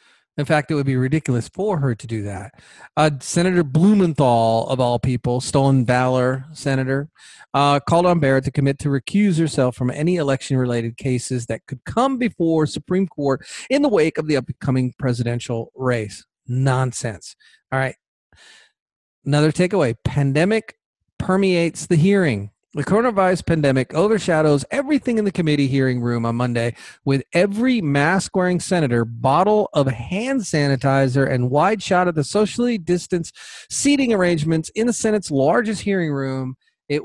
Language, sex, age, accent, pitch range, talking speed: English, male, 40-59, American, 125-180 Hz, 150 wpm